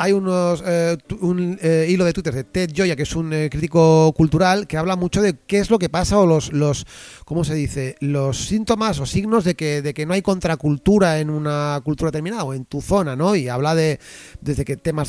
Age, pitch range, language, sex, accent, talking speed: 30-49, 145-190 Hz, Spanish, male, Spanish, 230 wpm